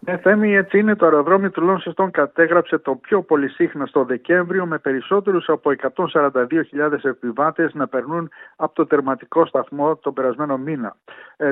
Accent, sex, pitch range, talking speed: native, male, 140-175 Hz, 150 wpm